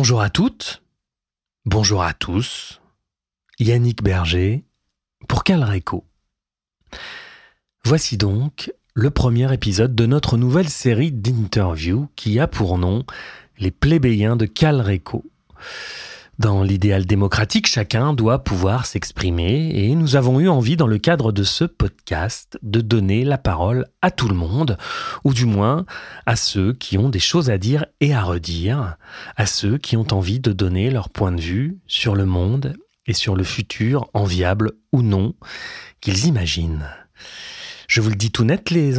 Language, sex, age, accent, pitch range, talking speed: French, male, 30-49, French, 100-125 Hz, 150 wpm